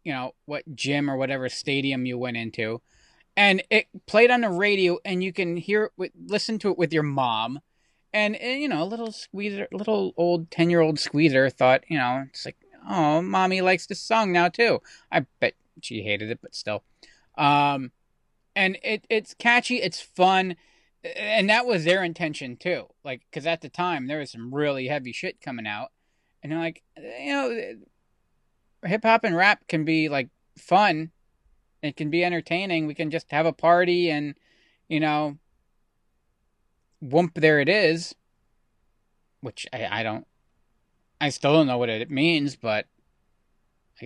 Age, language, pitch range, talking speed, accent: 20-39, English, 135-185 Hz, 170 wpm, American